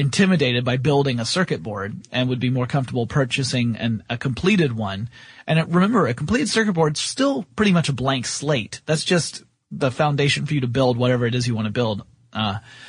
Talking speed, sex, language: 215 wpm, male, English